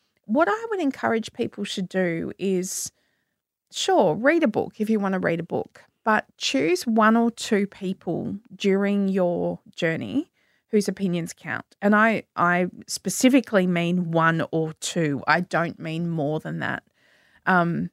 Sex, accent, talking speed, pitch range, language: female, Australian, 155 wpm, 175-220 Hz, English